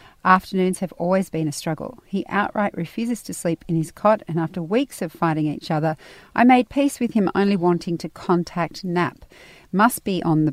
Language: English